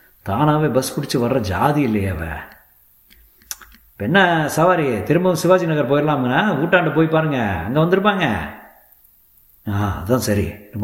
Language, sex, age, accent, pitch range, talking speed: Tamil, male, 50-69, native, 100-135 Hz, 95 wpm